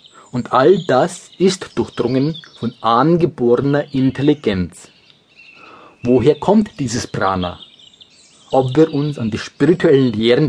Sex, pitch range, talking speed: male, 120-160 Hz, 110 wpm